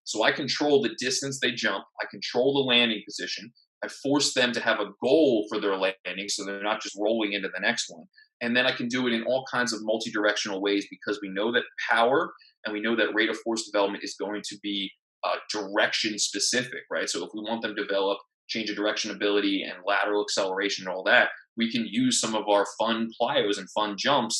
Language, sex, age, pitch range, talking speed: French, male, 20-39, 100-125 Hz, 225 wpm